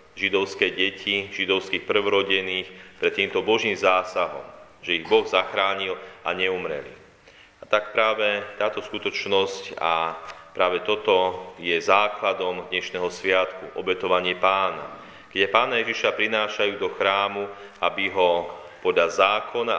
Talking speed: 115 wpm